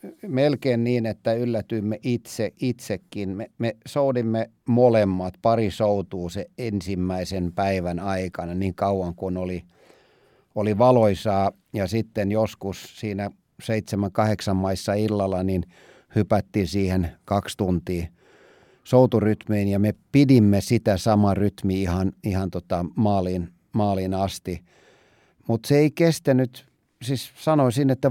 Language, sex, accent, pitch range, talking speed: Finnish, male, native, 95-120 Hz, 115 wpm